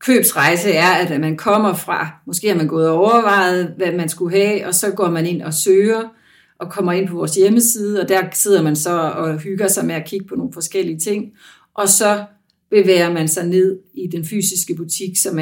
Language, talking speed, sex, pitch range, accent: Danish, 215 wpm, female, 170-200 Hz, native